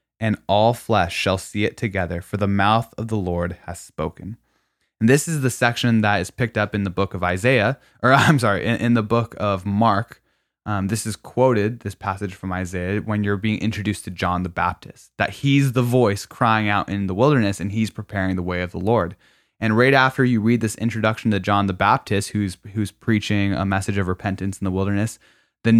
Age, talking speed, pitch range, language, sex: 10-29, 215 wpm, 95-115 Hz, English, male